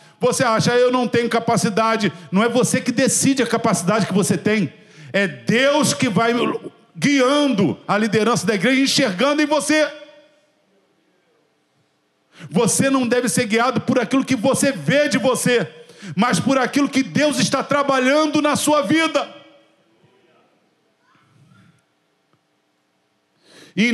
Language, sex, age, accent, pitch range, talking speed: Portuguese, male, 50-69, Brazilian, 170-240 Hz, 130 wpm